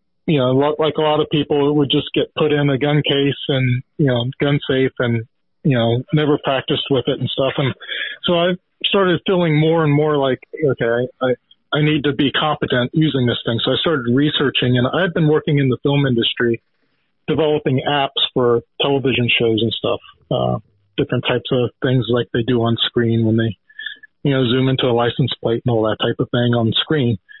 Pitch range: 125-150 Hz